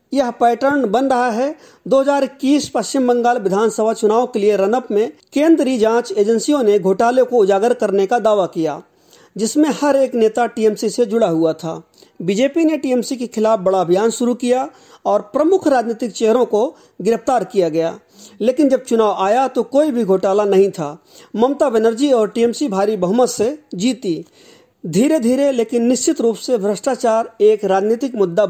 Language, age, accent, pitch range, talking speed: English, 40-59, Indian, 210-255 Hz, 125 wpm